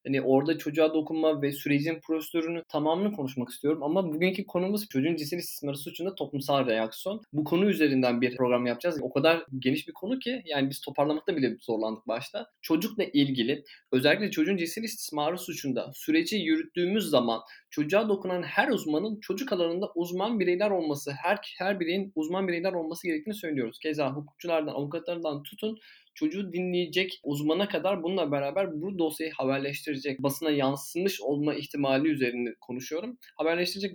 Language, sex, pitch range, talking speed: Turkish, male, 140-180 Hz, 150 wpm